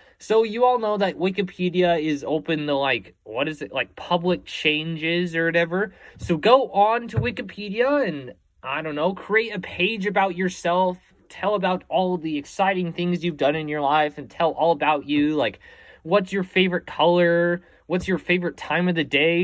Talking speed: 185 wpm